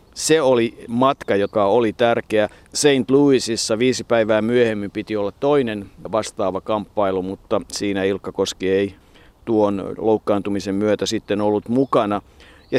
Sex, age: male, 50-69